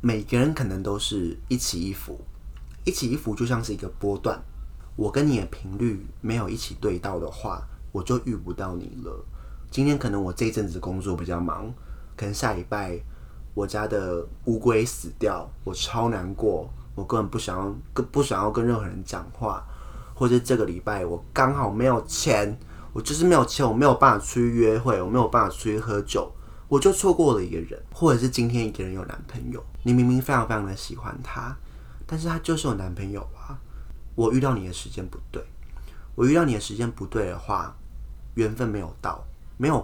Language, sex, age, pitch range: Chinese, male, 20-39, 95-125 Hz